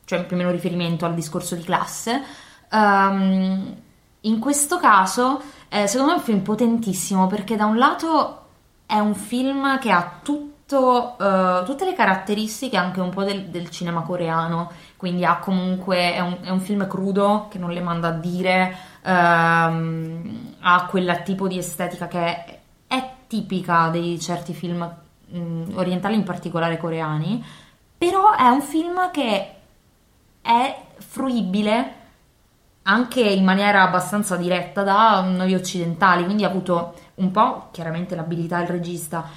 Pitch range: 175-210 Hz